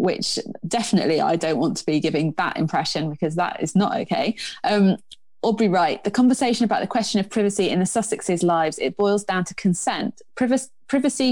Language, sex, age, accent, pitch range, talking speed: English, female, 20-39, British, 170-215 Hz, 185 wpm